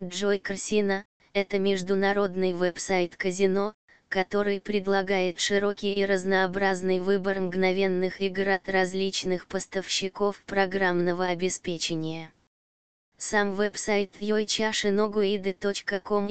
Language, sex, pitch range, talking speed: Russian, female, 185-200 Hz, 90 wpm